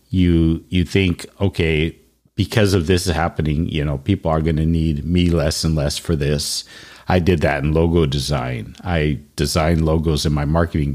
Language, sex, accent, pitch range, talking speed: English, male, American, 75-100 Hz, 185 wpm